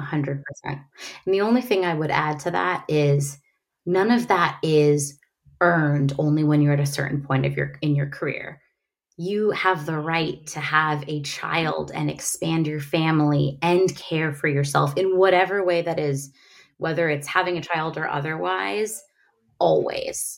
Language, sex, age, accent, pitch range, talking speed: English, female, 20-39, American, 145-185 Hz, 170 wpm